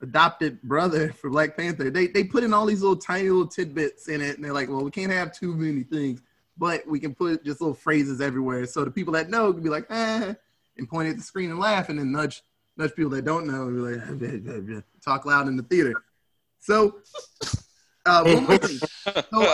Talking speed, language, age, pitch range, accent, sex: 215 wpm, English, 20-39, 140-190 Hz, American, male